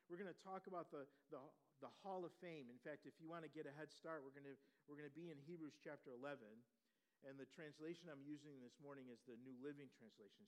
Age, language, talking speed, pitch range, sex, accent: 50-69, English, 240 wpm, 140-185 Hz, male, American